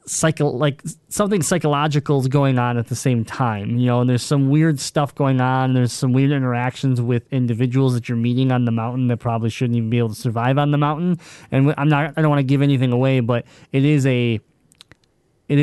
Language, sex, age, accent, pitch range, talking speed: English, male, 20-39, American, 120-150 Hz, 225 wpm